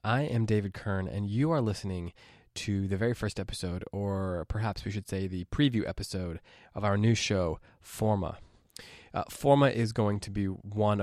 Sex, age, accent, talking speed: male, 20-39, American, 180 wpm